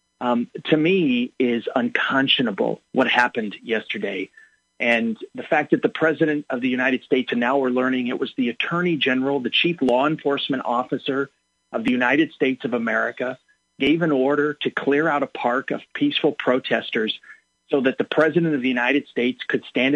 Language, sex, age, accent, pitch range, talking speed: English, male, 40-59, American, 125-165 Hz, 175 wpm